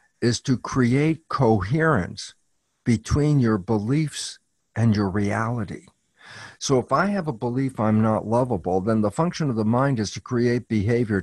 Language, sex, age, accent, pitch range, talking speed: English, male, 50-69, American, 115-160 Hz, 155 wpm